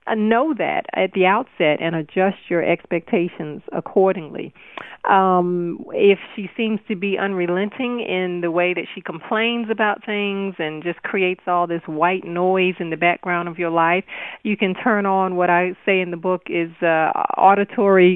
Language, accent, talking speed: English, American, 170 wpm